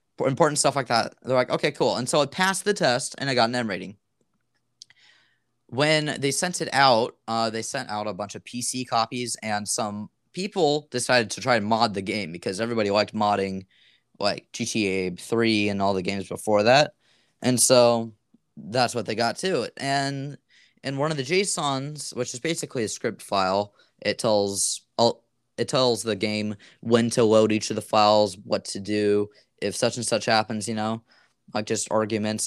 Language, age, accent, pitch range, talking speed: English, 20-39, American, 110-135 Hz, 190 wpm